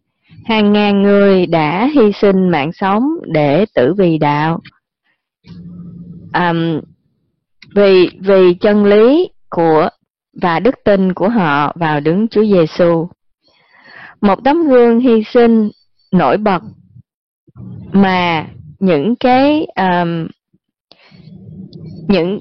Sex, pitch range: female, 170-225 Hz